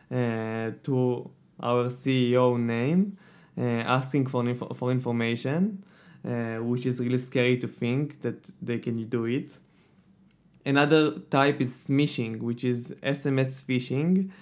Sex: male